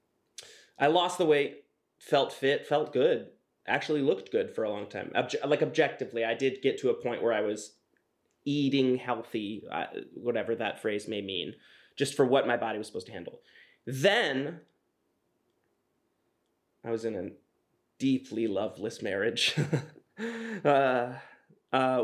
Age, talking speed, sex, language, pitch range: 20-39, 145 wpm, male, English, 115-150 Hz